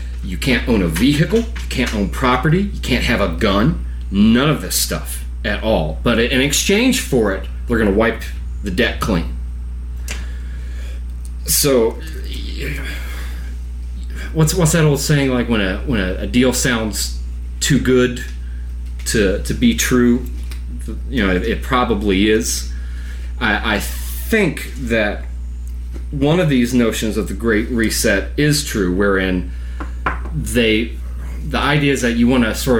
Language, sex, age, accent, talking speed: English, male, 30-49, American, 150 wpm